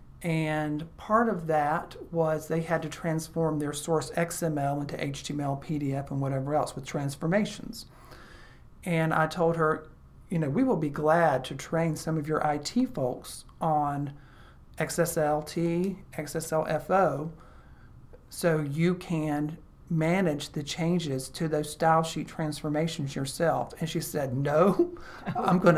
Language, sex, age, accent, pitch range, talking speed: English, male, 40-59, American, 150-170 Hz, 135 wpm